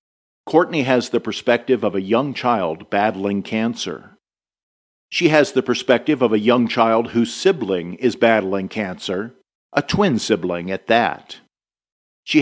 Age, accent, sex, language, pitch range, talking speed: 50-69, American, male, English, 100-130 Hz, 140 wpm